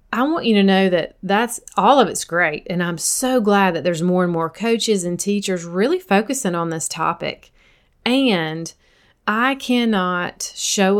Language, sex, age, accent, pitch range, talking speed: English, female, 30-49, American, 175-225 Hz, 175 wpm